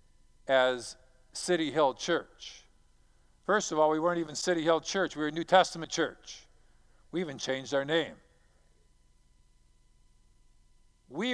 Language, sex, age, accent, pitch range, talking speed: English, male, 50-69, American, 170-225 Hz, 125 wpm